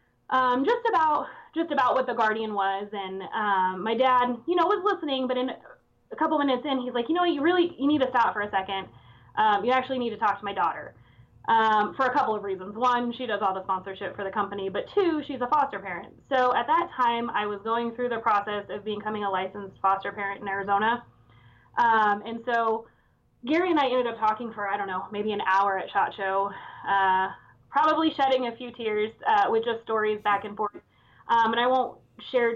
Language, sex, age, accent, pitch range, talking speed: English, female, 20-39, American, 200-250 Hz, 225 wpm